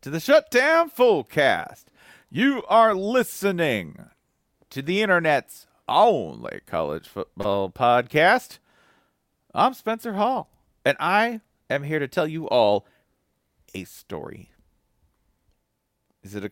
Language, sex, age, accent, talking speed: English, male, 40-59, American, 115 wpm